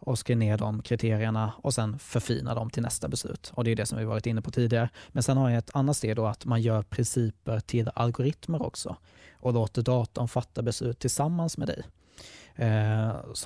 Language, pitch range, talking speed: Swedish, 110-125 Hz, 205 wpm